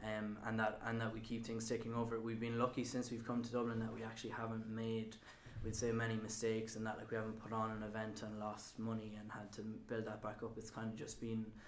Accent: Irish